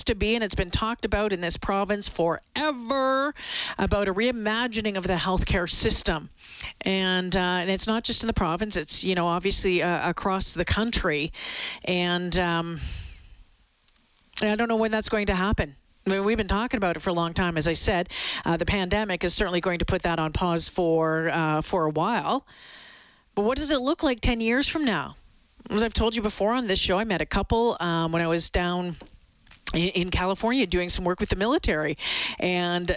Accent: American